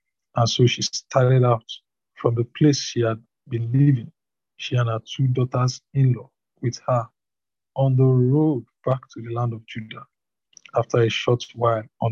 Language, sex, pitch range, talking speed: English, male, 115-130 Hz, 165 wpm